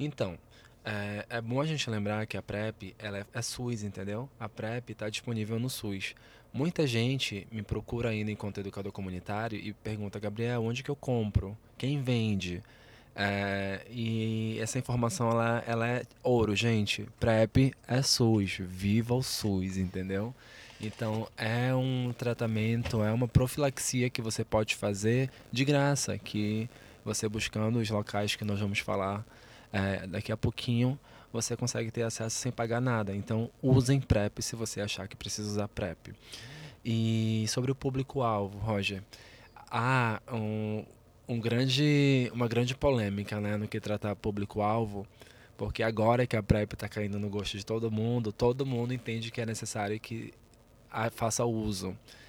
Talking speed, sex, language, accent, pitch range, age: 155 wpm, male, Portuguese, Brazilian, 105-120 Hz, 20-39